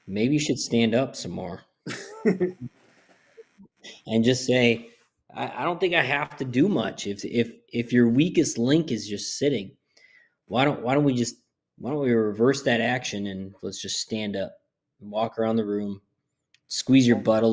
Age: 20-39